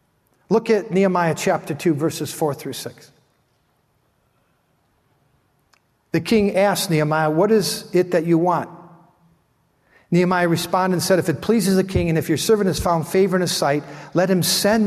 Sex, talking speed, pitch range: male, 165 wpm, 150-190 Hz